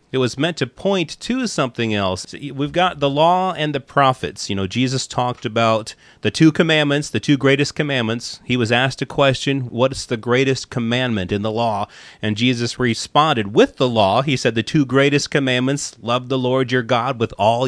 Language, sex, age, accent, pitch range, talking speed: English, male, 30-49, American, 115-150 Hz, 195 wpm